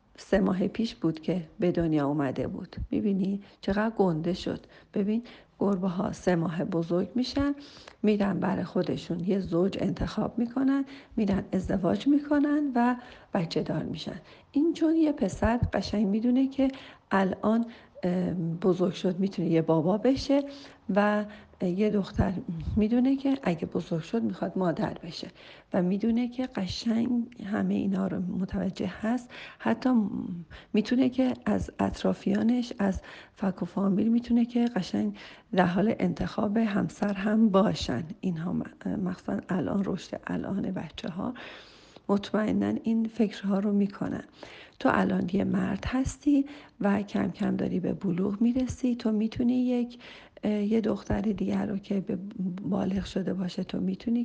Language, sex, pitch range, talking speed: Persian, female, 190-230 Hz, 135 wpm